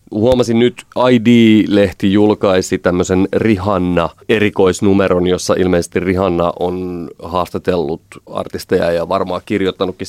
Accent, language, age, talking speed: native, Finnish, 30-49, 90 wpm